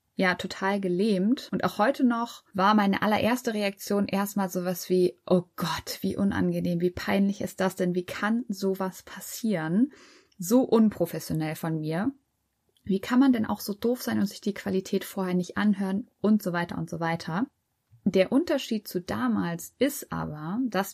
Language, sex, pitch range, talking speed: German, female, 180-225 Hz, 170 wpm